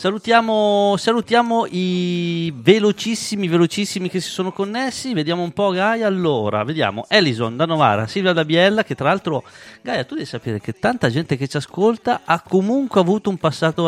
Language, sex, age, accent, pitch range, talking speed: Italian, male, 40-59, native, 130-190 Hz, 170 wpm